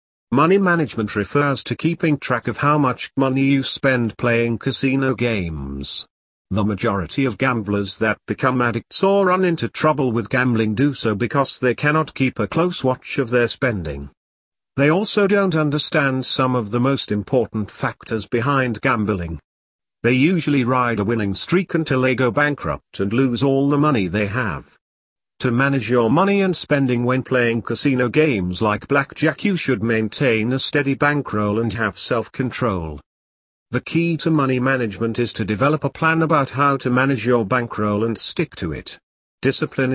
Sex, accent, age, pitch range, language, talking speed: male, British, 50-69, 110-145 Hz, English, 165 wpm